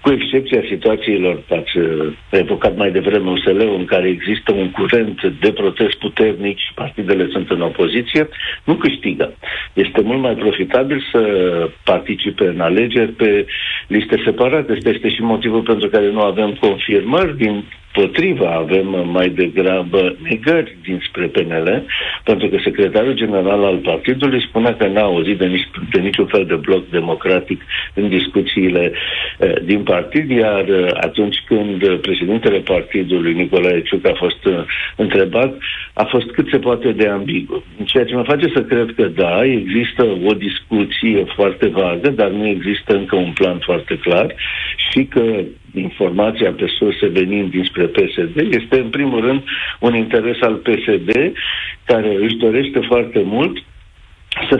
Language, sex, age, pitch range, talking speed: Romanian, male, 60-79, 95-120 Hz, 145 wpm